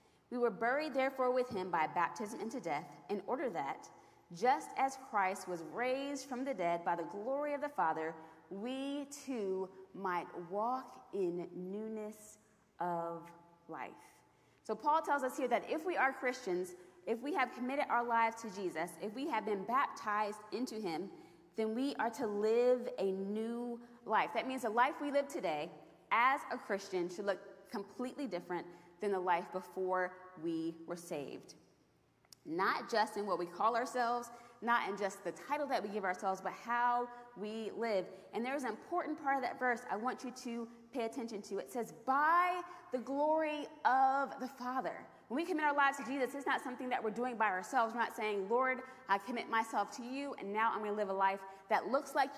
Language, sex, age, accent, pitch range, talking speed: English, female, 20-39, American, 195-265 Hz, 190 wpm